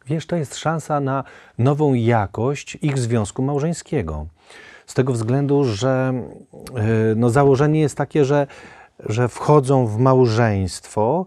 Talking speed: 120 wpm